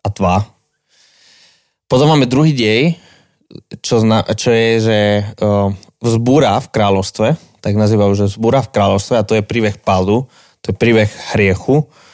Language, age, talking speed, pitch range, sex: Slovak, 20-39, 135 wpm, 100-115 Hz, male